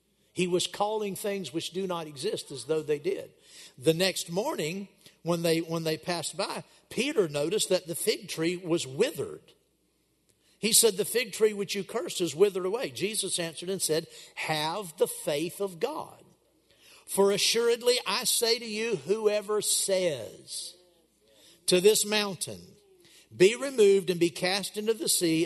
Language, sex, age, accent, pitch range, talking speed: English, male, 50-69, American, 175-260 Hz, 160 wpm